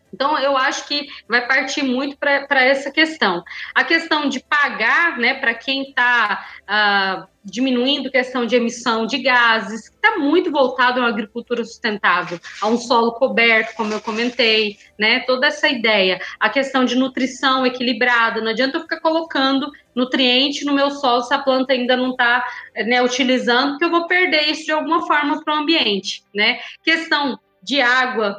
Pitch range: 230-290 Hz